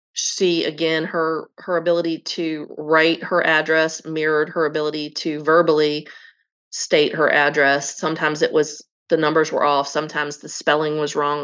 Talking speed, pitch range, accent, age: 150 wpm, 150-170 Hz, American, 30-49